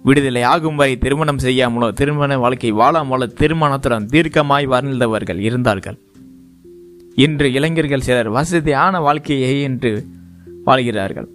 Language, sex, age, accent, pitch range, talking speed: Tamil, male, 20-39, native, 115-155 Hz, 100 wpm